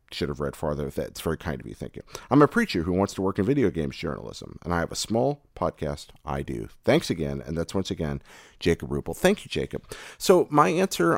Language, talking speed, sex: English, 240 wpm, male